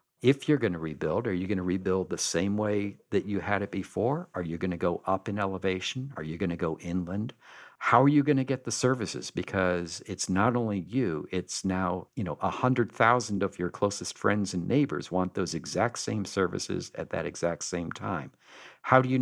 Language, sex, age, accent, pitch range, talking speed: English, male, 50-69, American, 85-100 Hz, 215 wpm